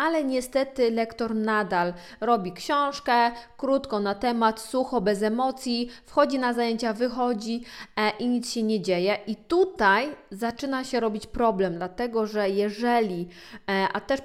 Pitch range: 215-250 Hz